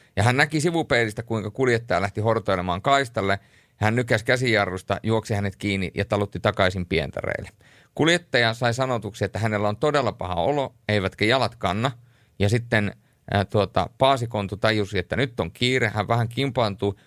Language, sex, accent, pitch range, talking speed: Finnish, male, native, 100-125 Hz, 155 wpm